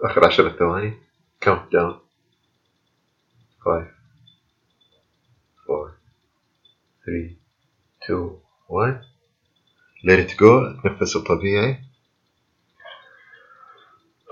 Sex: male